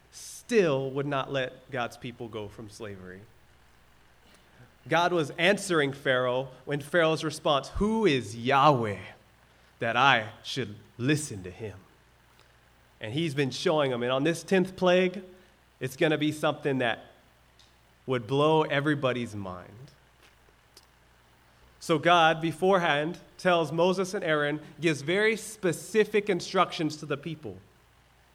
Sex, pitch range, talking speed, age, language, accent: male, 115-165 Hz, 125 wpm, 30-49, English, American